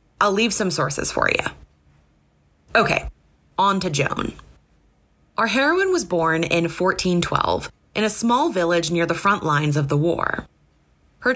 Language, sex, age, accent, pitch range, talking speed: English, female, 20-39, American, 165-220 Hz, 150 wpm